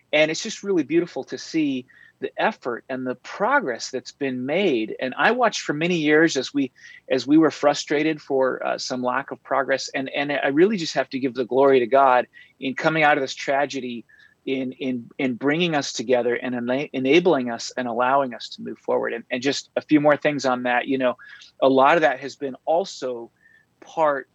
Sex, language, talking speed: male, English, 210 wpm